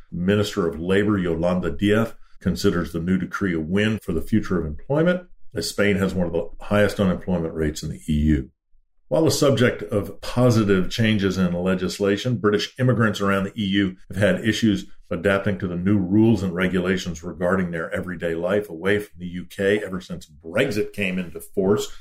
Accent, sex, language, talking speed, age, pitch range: American, male, English, 175 wpm, 50-69, 90-110 Hz